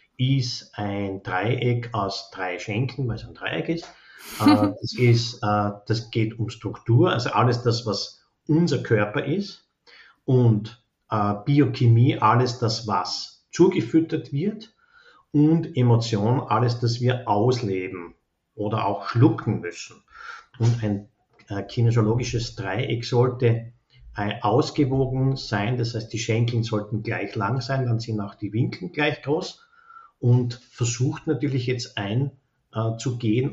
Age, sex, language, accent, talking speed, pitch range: 50-69, male, German, Austrian, 125 wpm, 105-125 Hz